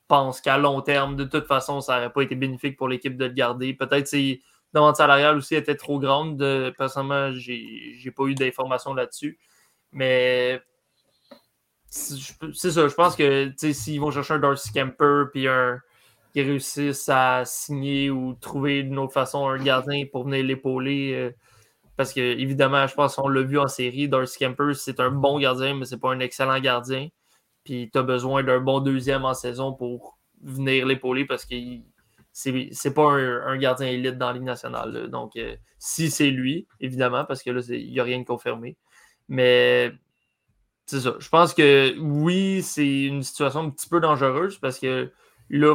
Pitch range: 130-145 Hz